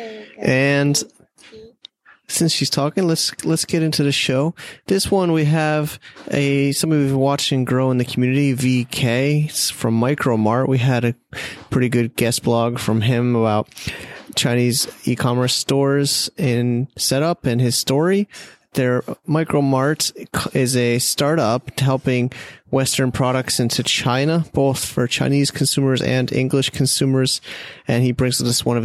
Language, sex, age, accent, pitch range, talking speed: English, male, 30-49, American, 120-140 Hz, 150 wpm